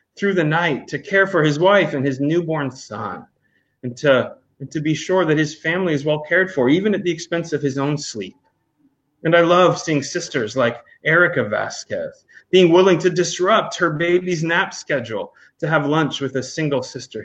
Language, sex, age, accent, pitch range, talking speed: English, male, 30-49, American, 140-170 Hz, 195 wpm